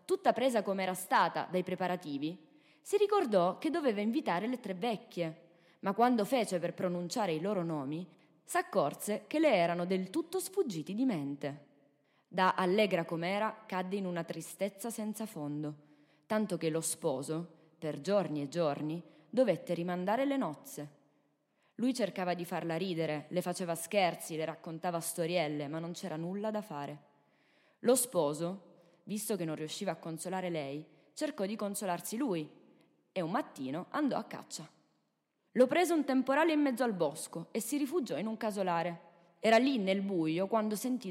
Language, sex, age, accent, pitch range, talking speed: Italian, female, 20-39, native, 165-220 Hz, 160 wpm